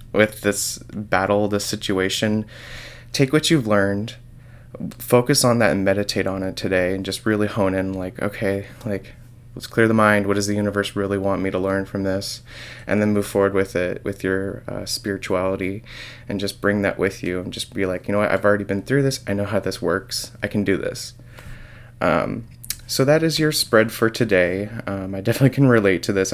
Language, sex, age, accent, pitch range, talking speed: English, male, 20-39, American, 100-120 Hz, 210 wpm